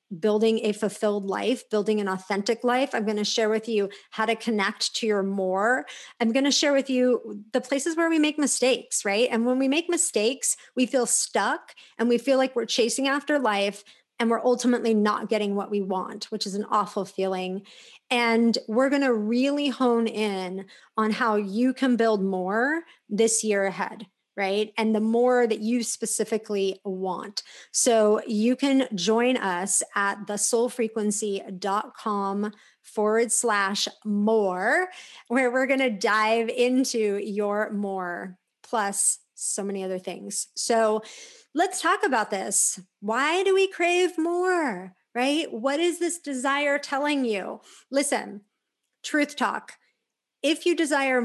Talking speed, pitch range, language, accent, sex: 155 wpm, 205-260 Hz, English, American, female